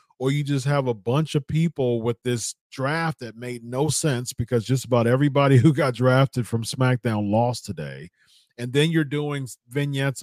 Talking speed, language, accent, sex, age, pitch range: 180 wpm, English, American, male, 40-59, 115-145 Hz